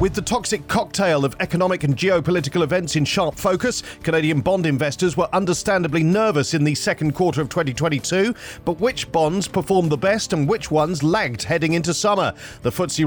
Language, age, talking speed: English, 40-59, 180 wpm